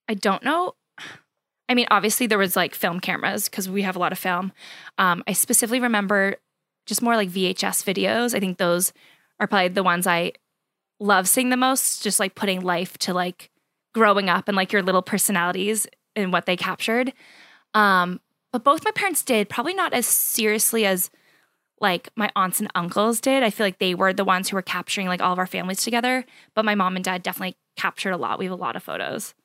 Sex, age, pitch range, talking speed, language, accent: female, 10-29, 185-220 Hz, 210 wpm, English, American